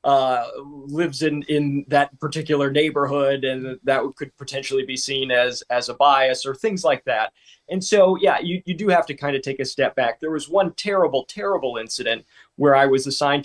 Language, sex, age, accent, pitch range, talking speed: English, male, 20-39, American, 125-150 Hz, 200 wpm